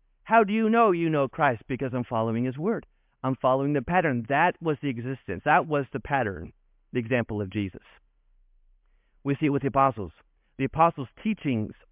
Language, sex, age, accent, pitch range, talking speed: English, male, 40-59, American, 140-205 Hz, 185 wpm